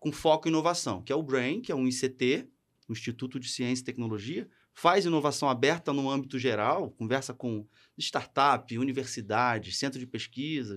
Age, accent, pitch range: 30-49, Brazilian, 125-160 Hz